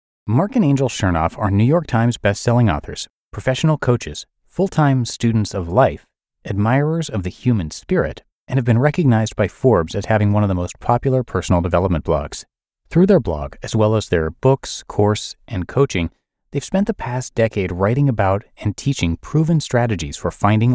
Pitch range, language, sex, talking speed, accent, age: 100-135 Hz, English, male, 175 wpm, American, 30-49